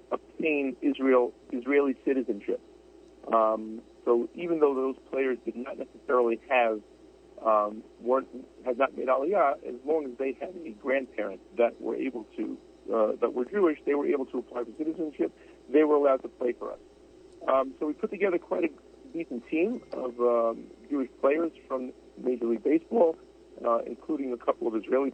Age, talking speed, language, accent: 50-69, 170 wpm, English, American